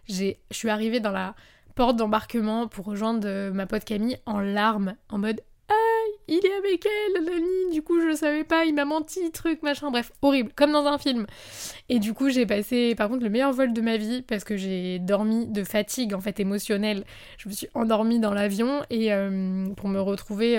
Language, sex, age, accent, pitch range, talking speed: French, female, 20-39, French, 205-260 Hz, 215 wpm